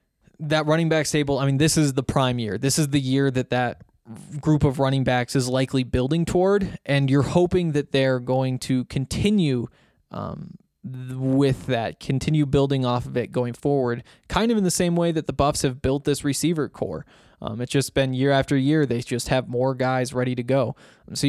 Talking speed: 205 wpm